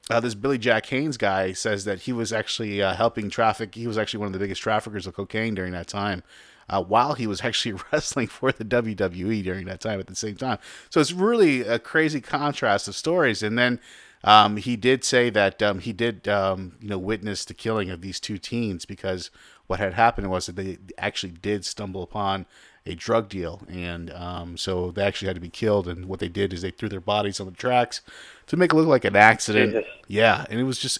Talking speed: 230 wpm